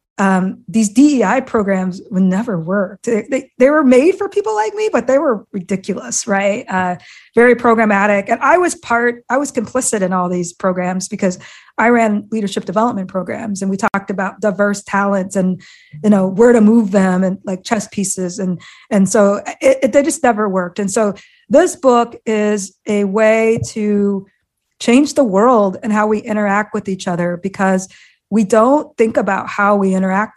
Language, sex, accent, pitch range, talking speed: English, female, American, 195-235 Hz, 175 wpm